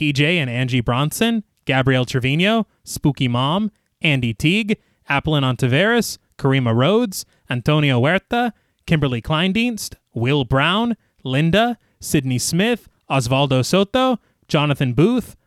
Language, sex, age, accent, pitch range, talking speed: English, male, 20-39, American, 130-215 Hz, 105 wpm